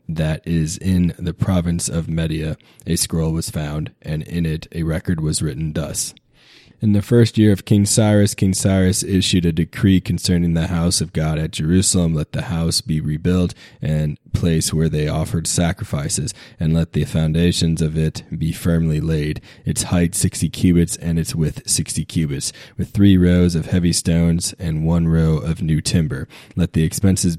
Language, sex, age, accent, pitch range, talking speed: English, male, 20-39, American, 80-90 Hz, 180 wpm